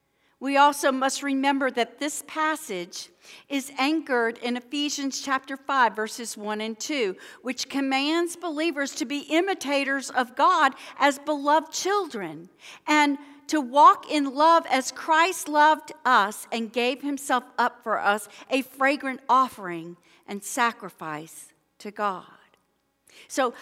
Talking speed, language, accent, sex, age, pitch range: 130 wpm, English, American, female, 50-69, 240-310 Hz